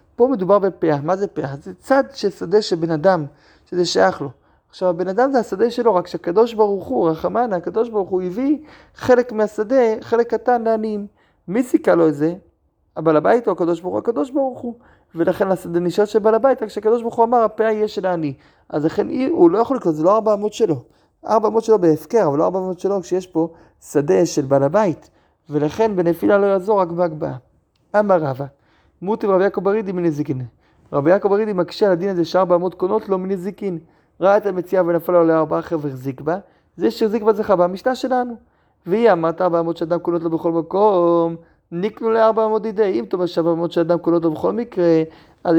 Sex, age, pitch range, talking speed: male, 30-49, 165-220 Hz, 165 wpm